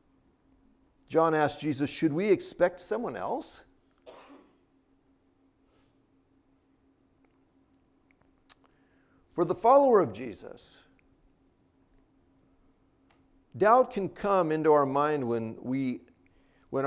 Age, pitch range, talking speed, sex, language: 50-69, 120-190 Hz, 75 wpm, male, English